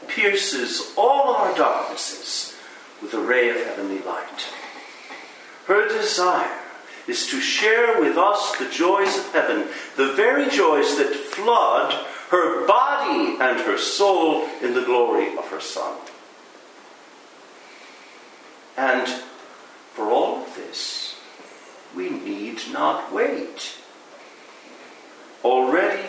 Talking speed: 110 wpm